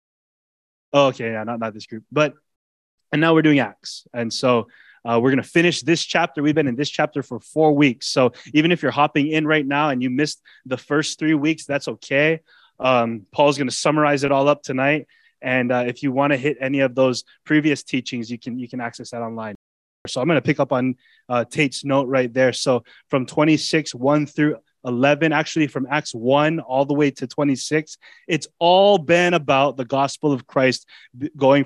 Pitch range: 125-155 Hz